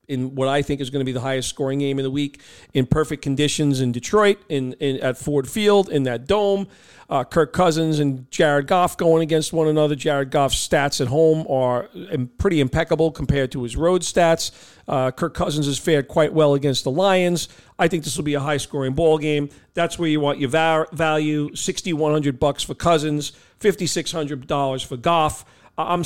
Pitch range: 135-160 Hz